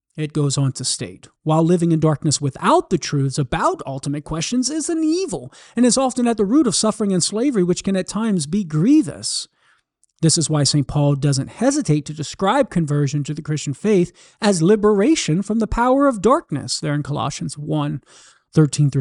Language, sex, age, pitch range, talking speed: English, male, 40-59, 150-210 Hz, 190 wpm